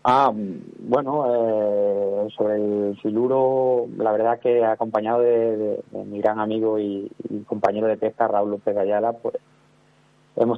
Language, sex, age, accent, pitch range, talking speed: Spanish, male, 30-49, Spanish, 105-115 Hz, 140 wpm